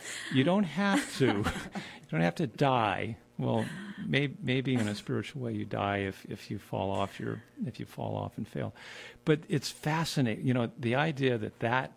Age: 50-69